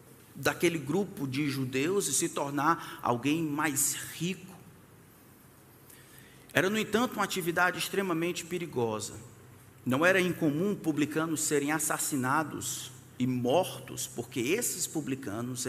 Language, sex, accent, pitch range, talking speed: Portuguese, male, Brazilian, 130-170 Hz, 105 wpm